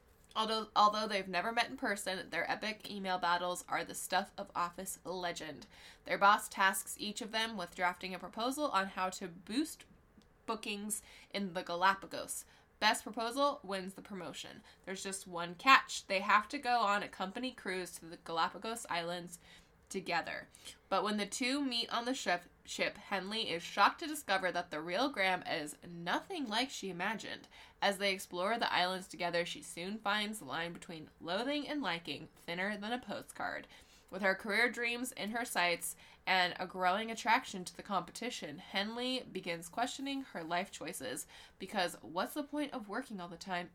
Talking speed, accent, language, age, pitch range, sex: 175 wpm, American, English, 10-29, 175-230 Hz, female